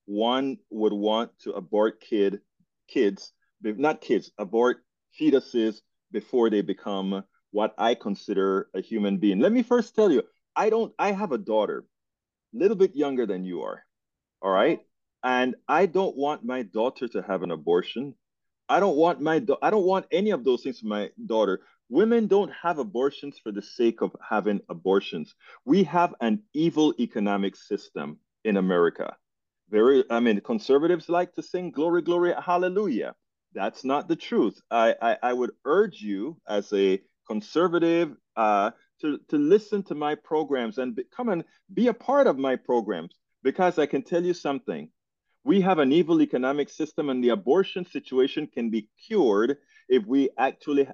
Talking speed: 170 wpm